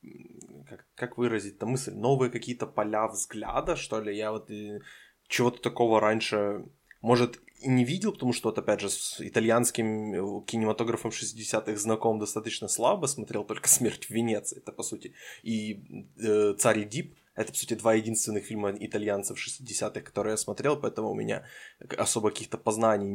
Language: Ukrainian